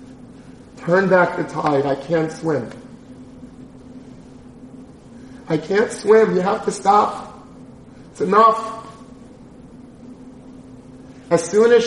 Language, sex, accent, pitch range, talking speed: English, male, American, 165-205 Hz, 95 wpm